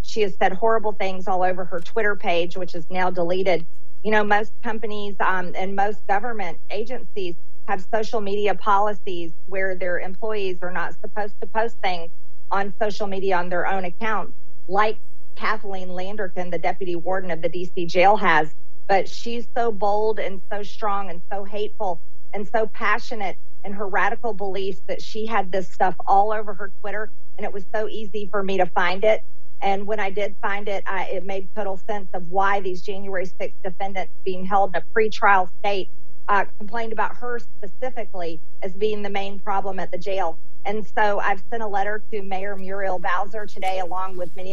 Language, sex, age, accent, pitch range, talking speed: English, female, 40-59, American, 185-210 Hz, 190 wpm